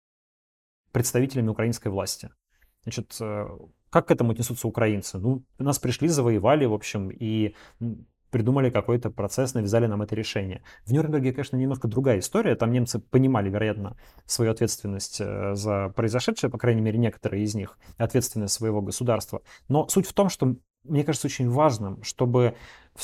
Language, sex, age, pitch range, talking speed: Russian, male, 20-39, 105-130 Hz, 150 wpm